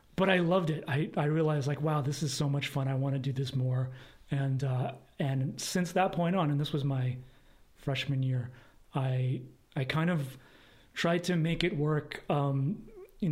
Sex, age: male, 30-49